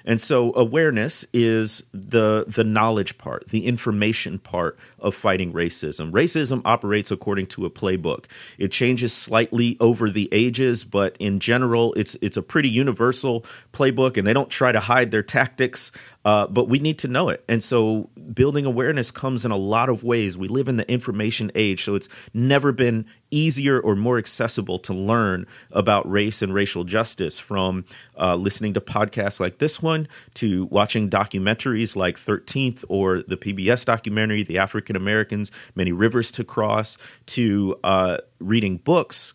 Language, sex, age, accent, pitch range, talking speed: English, male, 40-59, American, 100-125 Hz, 170 wpm